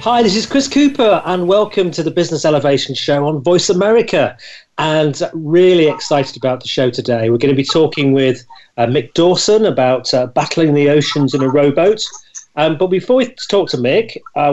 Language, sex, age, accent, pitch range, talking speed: English, male, 40-59, British, 130-165 Hz, 195 wpm